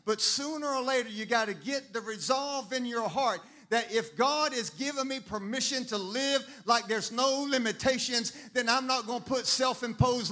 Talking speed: 190 wpm